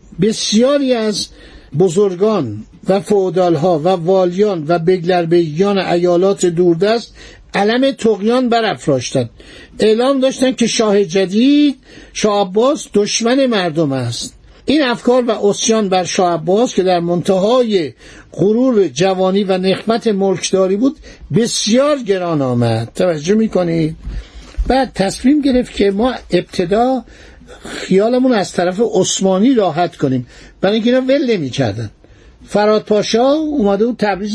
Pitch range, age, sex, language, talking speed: 180-240 Hz, 60-79, male, Persian, 115 wpm